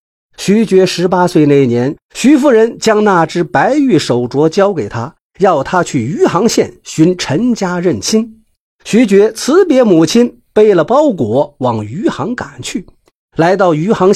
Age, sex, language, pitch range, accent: 50-69, male, Chinese, 155-245 Hz, native